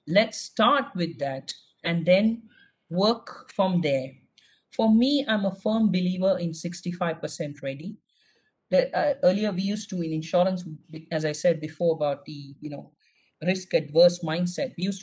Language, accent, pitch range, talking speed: English, Indian, 155-195 Hz, 155 wpm